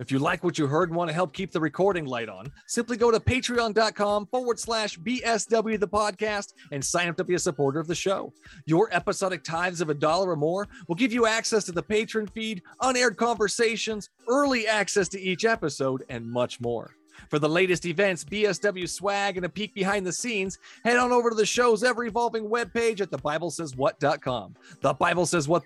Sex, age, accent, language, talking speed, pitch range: male, 30-49, American, English, 210 wpm, 170-225 Hz